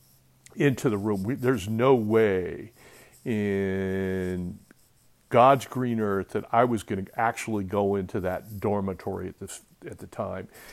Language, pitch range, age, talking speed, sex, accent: English, 105-130 Hz, 60-79, 145 wpm, male, American